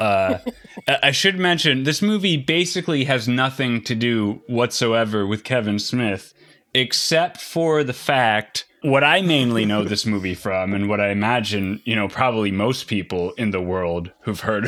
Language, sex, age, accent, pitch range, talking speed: English, male, 20-39, American, 105-130 Hz, 165 wpm